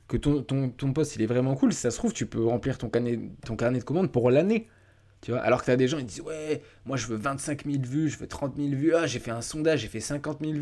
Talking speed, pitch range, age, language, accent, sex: 315 wpm, 115-150 Hz, 20-39, French, French, male